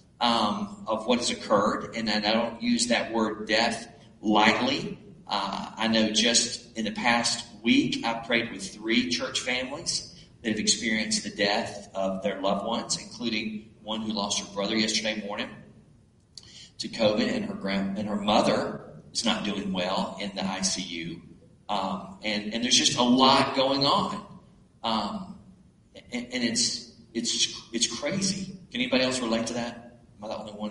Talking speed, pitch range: 165 wpm, 110-165 Hz